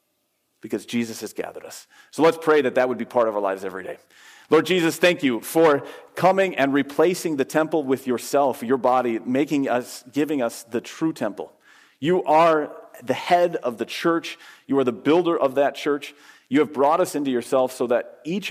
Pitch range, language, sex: 125-160 Hz, English, male